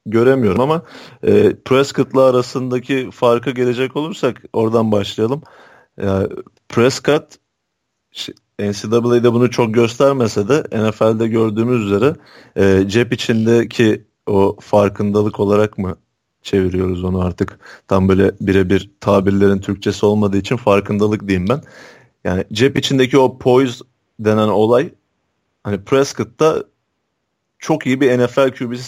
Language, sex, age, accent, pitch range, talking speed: Turkish, male, 40-59, native, 105-130 Hz, 105 wpm